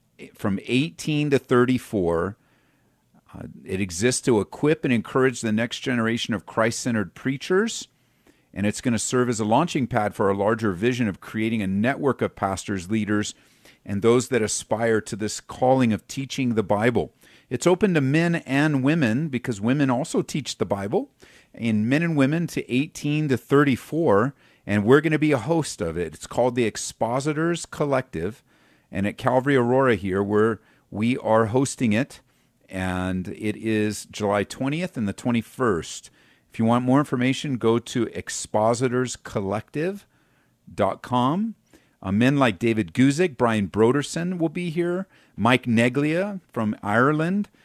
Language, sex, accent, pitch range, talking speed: English, male, American, 110-140 Hz, 150 wpm